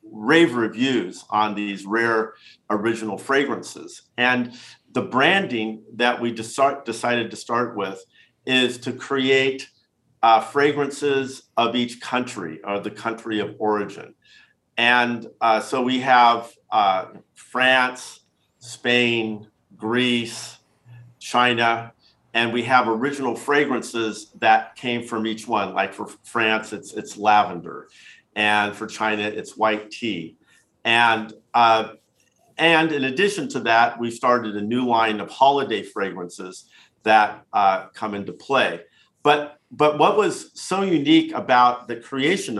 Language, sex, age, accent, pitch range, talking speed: English, male, 50-69, American, 110-125 Hz, 125 wpm